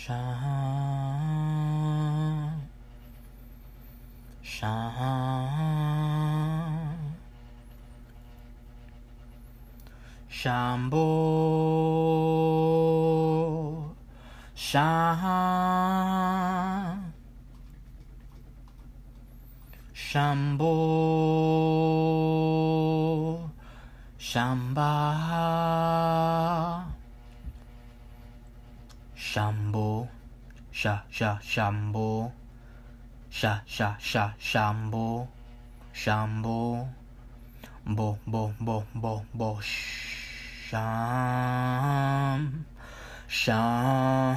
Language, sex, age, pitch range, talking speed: English, male, 30-49, 120-150 Hz, 35 wpm